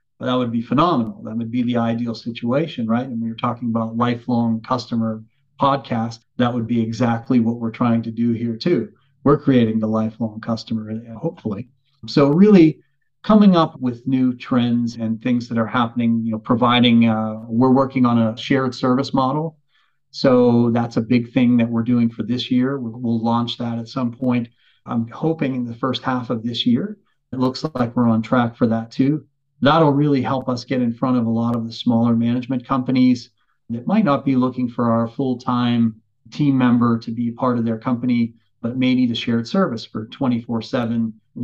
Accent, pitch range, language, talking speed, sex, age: American, 115-135 Hz, English, 195 wpm, male, 40-59